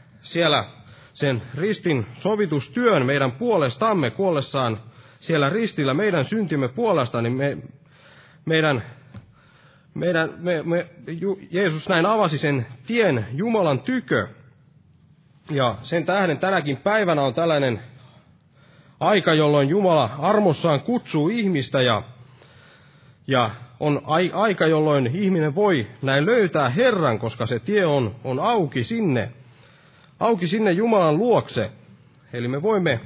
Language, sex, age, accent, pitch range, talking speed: Finnish, male, 30-49, native, 130-180 Hz, 105 wpm